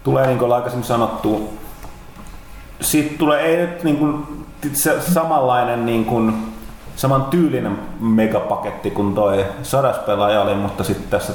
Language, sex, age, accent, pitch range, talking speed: Finnish, male, 30-49, native, 100-130 Hz, 110 wpm